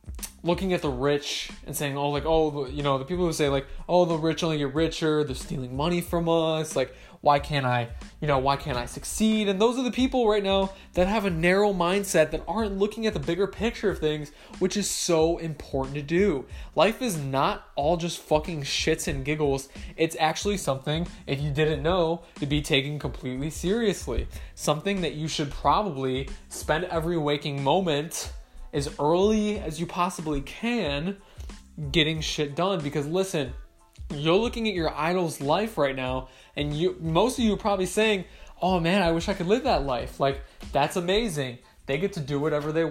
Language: English